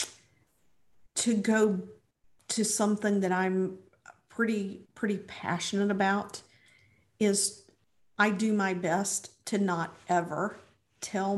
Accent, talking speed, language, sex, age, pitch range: American, 100 wpm, English, female, 50-69, 185-215 Hz